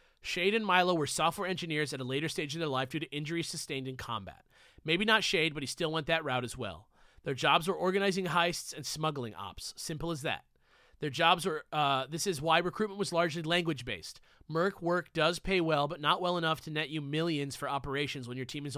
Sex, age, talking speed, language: male, 30-49, 225 wpm, English